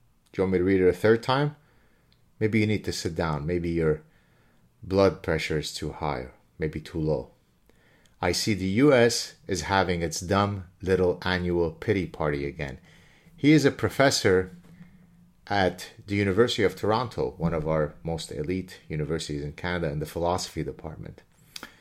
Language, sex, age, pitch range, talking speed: English, male, 30-49, 80-110 Hz, 165 wpm